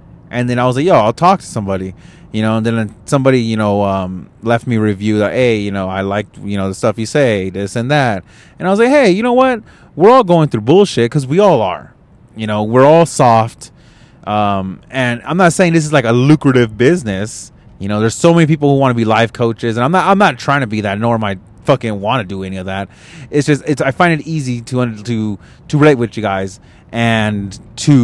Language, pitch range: English, 105-140 Hz